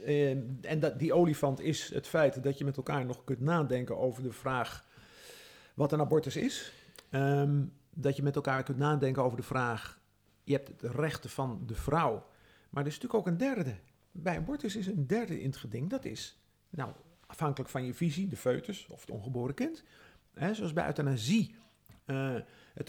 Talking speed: 190 wpm